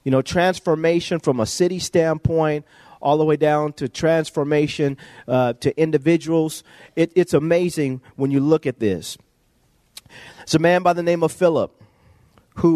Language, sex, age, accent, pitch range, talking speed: English, male, 40-59, American, 130-160 Hz, 150 wpm